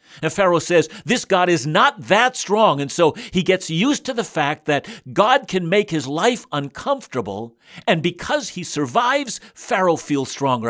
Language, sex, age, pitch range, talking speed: English, male, 60-79, 135-190 Hz, 175 wpm